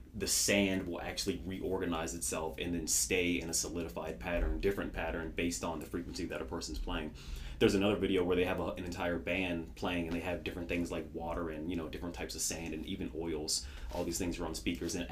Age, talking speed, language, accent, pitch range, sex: 30-49, 230 wpm, English, American, 80-95 Hz, male